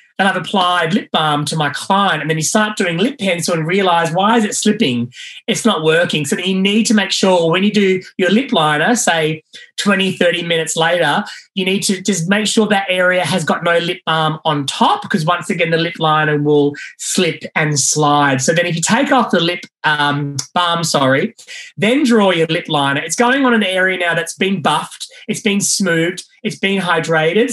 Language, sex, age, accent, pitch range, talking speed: English, male, 20-39, Australian, 160-215 Hz, 210 wpm